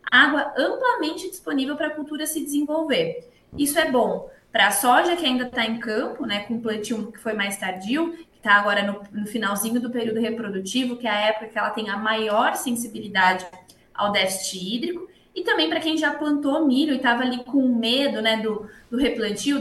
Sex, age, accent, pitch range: female, 20-39, Brazilian, 220-295 Hz